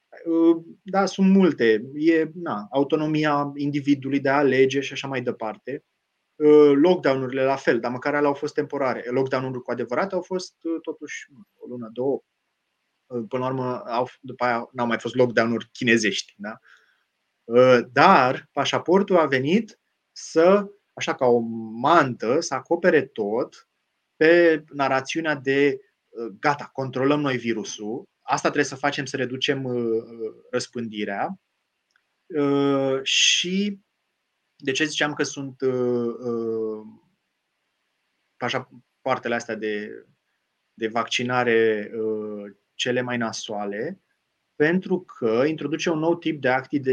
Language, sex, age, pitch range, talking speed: Romanian, male, 20-39, 120-150 Hz, 115 wpm